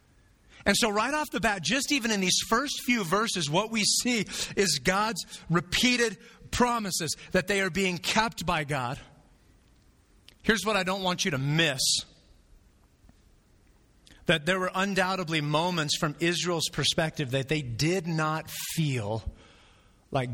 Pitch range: 135-215 Hz